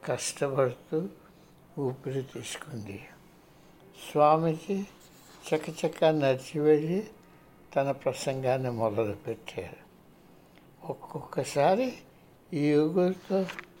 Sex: male